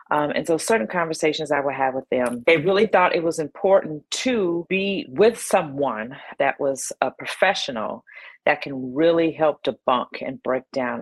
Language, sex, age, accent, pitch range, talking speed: English, female, 40-59, American, 145-175 Hz, 175 wpm